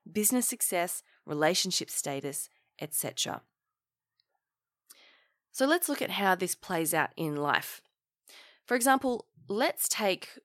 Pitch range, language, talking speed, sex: 160-250 Hz, English, 110 wpm, female